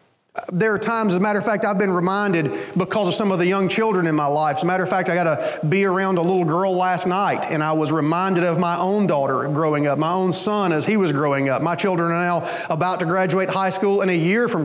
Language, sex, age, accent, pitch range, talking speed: English, male, 30-49, American, 175-210 Hz, 275 wpm